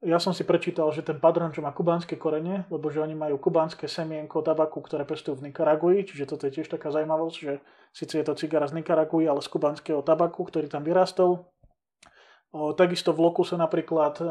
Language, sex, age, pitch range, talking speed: Slovak, male, 20-39, 150-170 Hz, 195 wpm